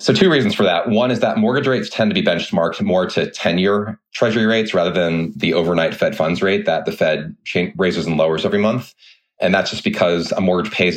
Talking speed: 225 wpm